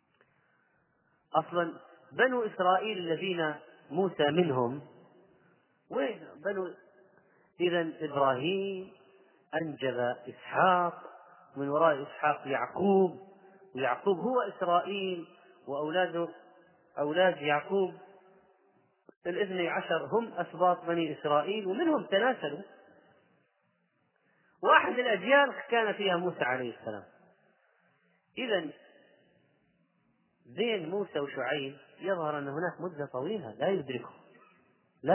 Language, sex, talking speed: Arabic, male, 80 wpm